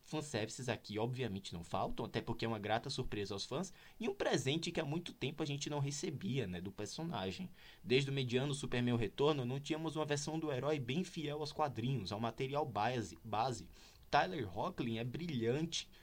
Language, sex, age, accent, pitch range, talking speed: Portuguese, male, 20-39, Brazilian, 115-160 Hz, 185 wpm